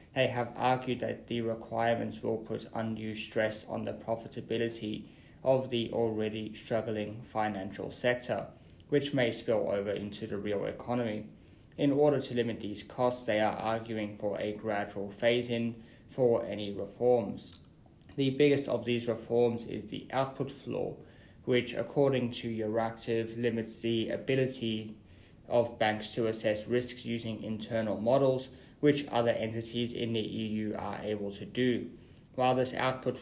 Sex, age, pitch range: male, 20-39, 110-125 Hz